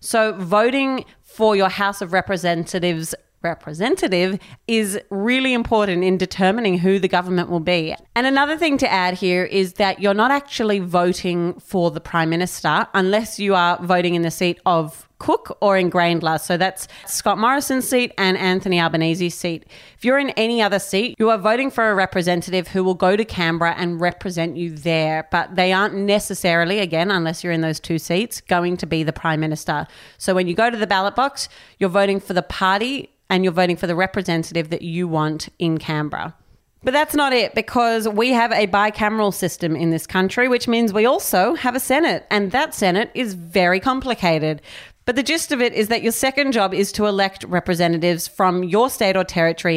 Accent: Australian